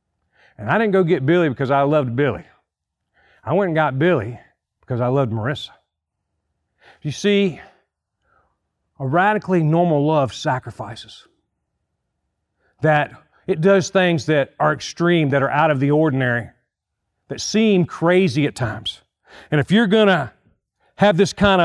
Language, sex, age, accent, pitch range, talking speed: English, male, 40-59, American, 115-180 Hz, 140 wpm